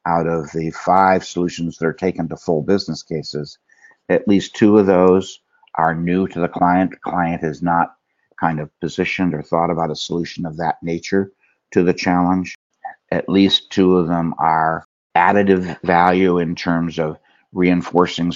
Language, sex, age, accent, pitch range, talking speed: English, male, 60-79, American, 80-90 Hz, 165 wpm